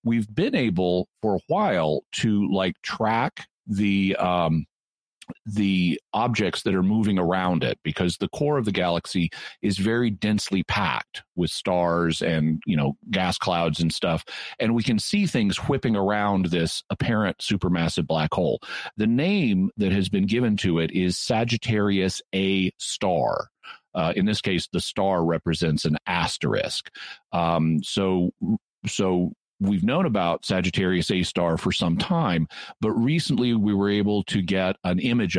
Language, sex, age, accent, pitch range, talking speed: English, male, 50-69, American, 90-110 Hz, 155 wpm